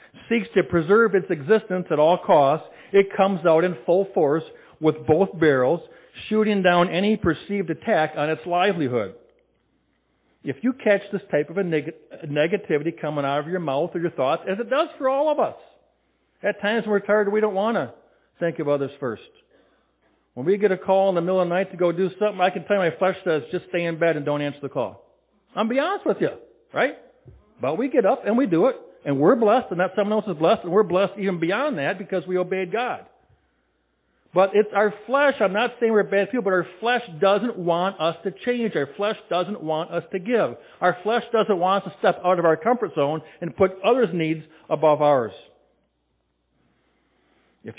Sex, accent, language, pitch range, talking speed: male, American, English, 155-210 Hz, 215 wpm